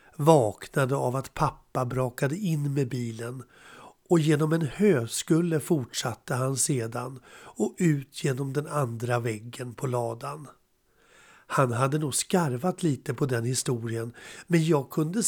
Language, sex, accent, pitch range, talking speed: Swedish, male, native, 125-165 Hz, 135 wpm